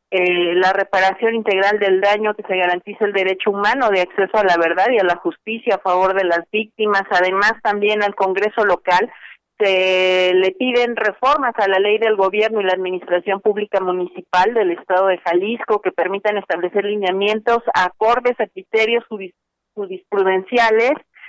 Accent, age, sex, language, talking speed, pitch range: Mexican, 40-59, female, Spanish, 160 wpm, 190-230 Hz